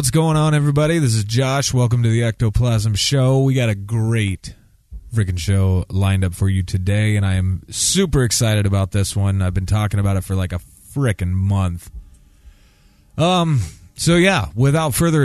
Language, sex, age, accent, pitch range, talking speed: English, male, 30-49, American, 90-120 Hz, 180 wpm